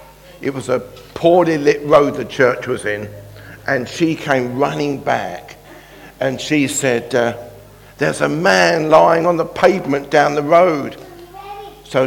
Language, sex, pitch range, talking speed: English, male, 120-150 Hz, 150 wpm